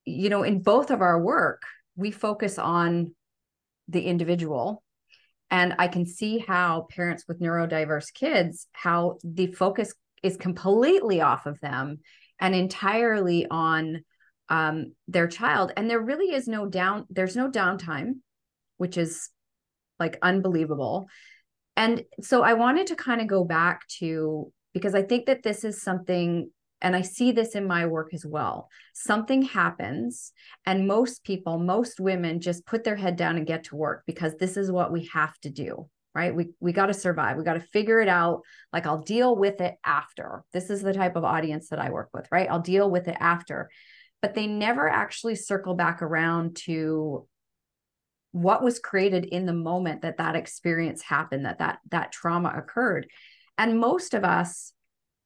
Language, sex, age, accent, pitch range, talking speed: English, female, 30-49, American, 165-205 Hz, 175 wpm